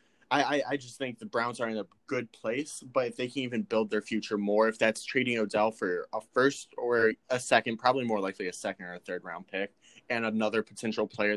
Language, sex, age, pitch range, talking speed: English, male, 20-39, 105-125 Hz, 230 wpm